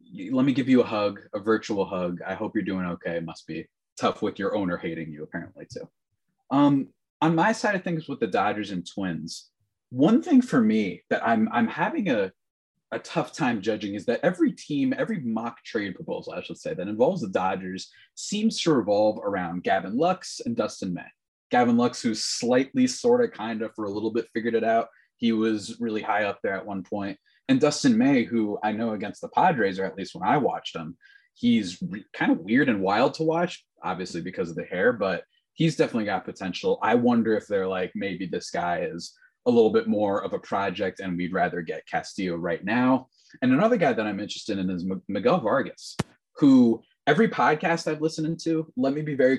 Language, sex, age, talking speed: English, male, 20-39, 210 wpm